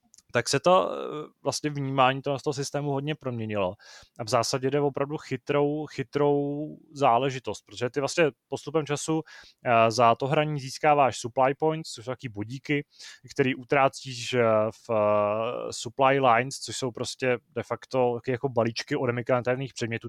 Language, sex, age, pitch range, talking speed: Czech, male, 20-39, 115-145 Hz, 145 wpm